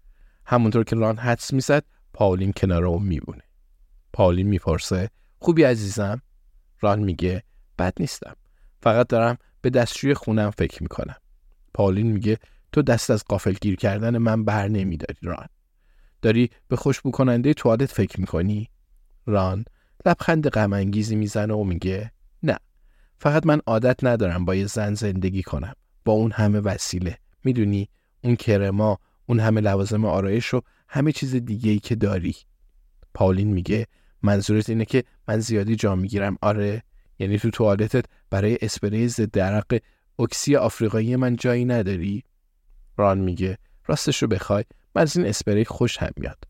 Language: Persian